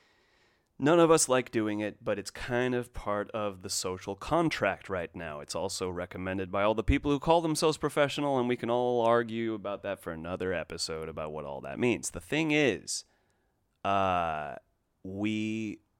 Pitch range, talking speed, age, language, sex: 95-130 Hz, 180 wpm, 30-49, English, male